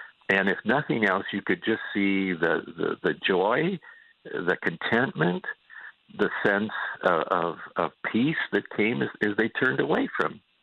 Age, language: 60-79, English